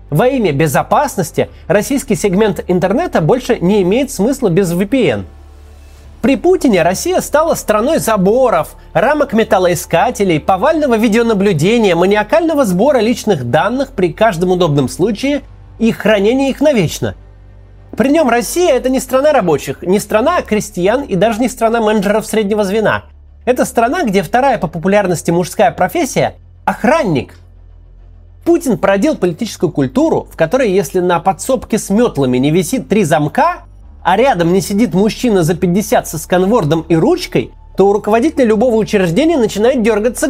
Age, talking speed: 30-49, 140 wpm